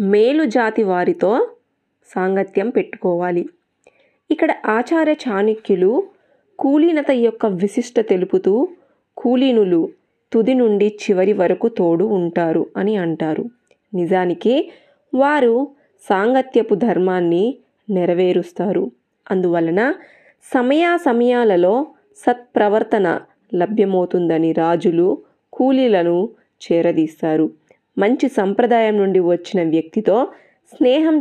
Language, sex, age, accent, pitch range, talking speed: Telugu, female, 20-39, native, 180-265 Hz, 75 wpm